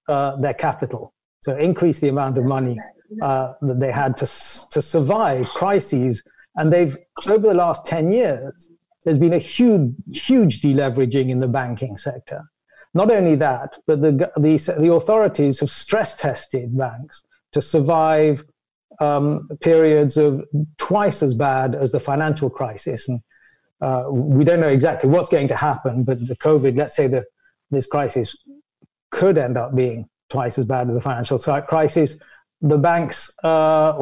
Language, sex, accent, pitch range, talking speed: English, male, British, 130-160 Hz, 165 wpm